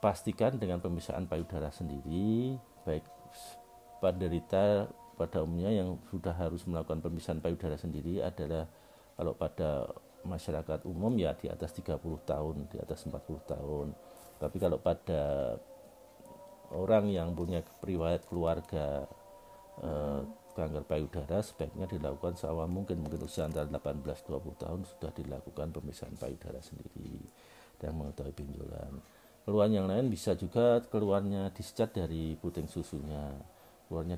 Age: 50-69